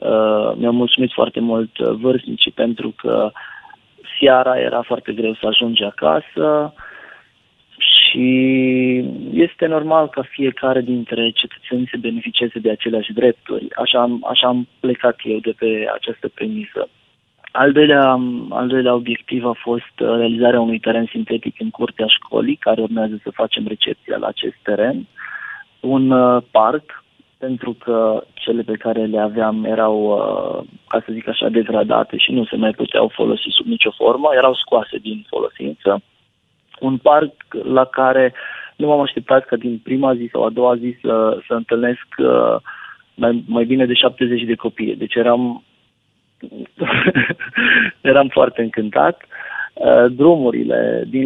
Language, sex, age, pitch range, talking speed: Romanian, male, 20-39, 115-130 Hz, 145 wpm